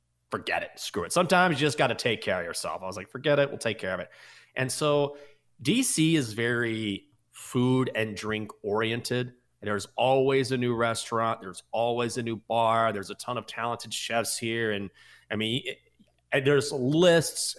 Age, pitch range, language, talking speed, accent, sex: 30-49, 110-155 Hz, English, 195 wpm, American, male